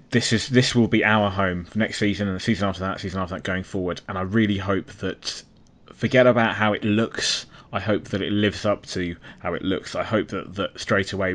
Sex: male